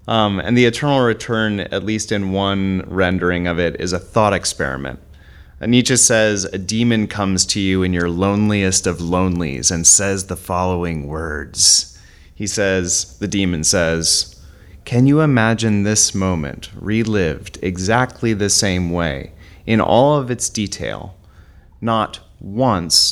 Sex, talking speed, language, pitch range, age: male, 145 wpm, English, 85-110 Hz, 30-49